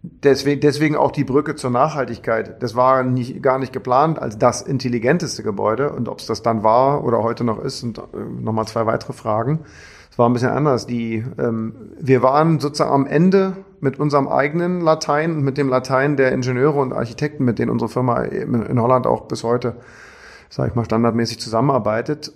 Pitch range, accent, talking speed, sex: 120-150 Hz, German, 190 wpm, male